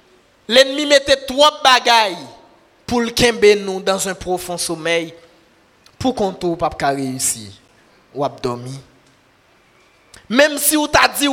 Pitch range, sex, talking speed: 175-280 Hz, male, 120 wpm